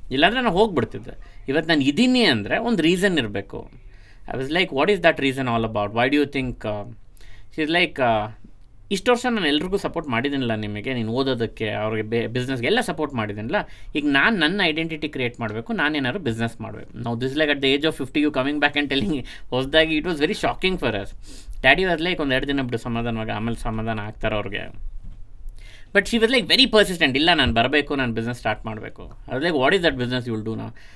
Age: 20-39